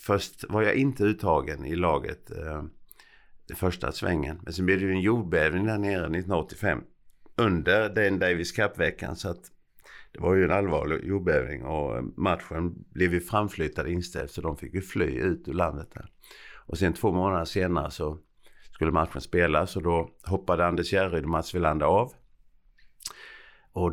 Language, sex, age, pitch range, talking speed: Swedish, male, 50-69, 80-95 Hz, 160 wpm